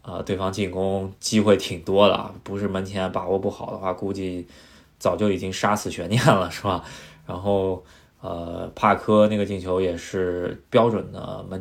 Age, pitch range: 20-39, 95-110 Hz